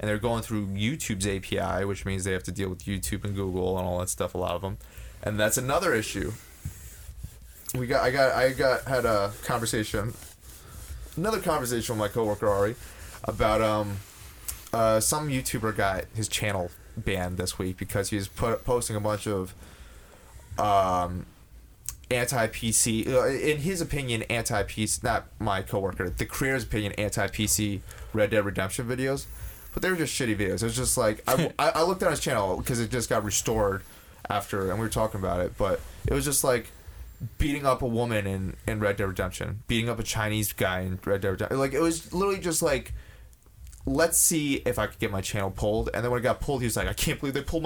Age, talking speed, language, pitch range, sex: 20-39, 200 wpm, English, 95-125 Hz, male